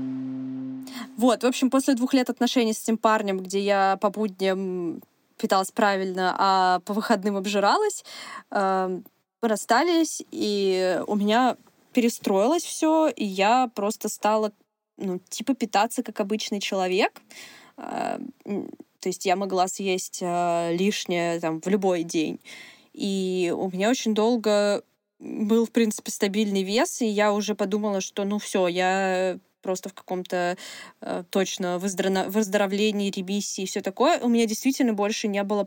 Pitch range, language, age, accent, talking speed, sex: 195-240 Hz, Russian, 20-39, native, 145 wpm, female